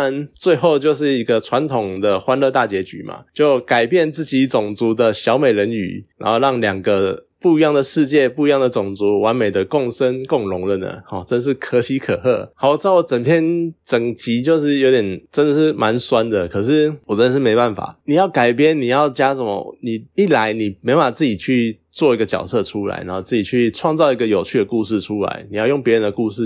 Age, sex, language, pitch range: 20-39, male, Chinese, 105-140 Hz